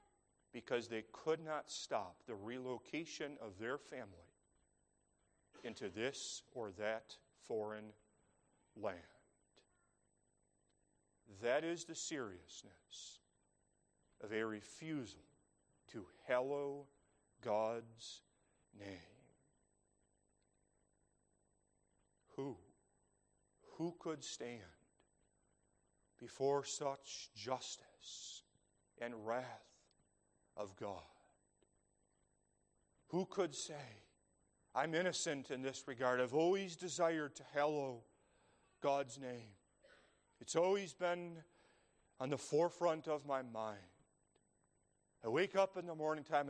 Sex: male